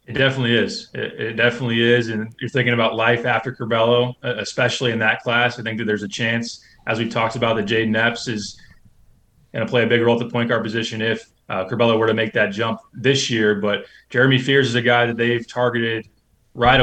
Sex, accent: male, American